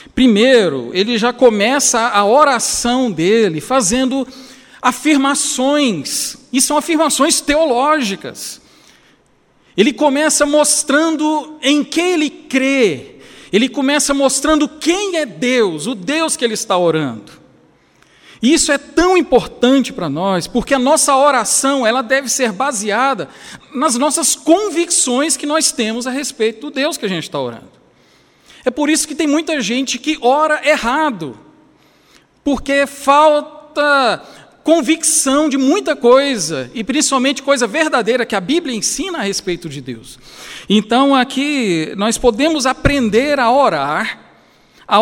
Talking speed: 130 wpm